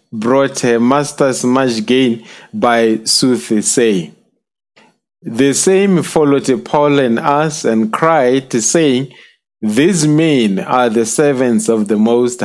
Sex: male